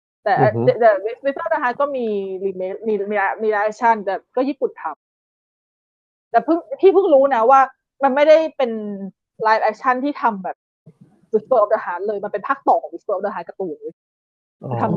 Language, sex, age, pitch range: Thai, female, 20-39, 205-280 Hz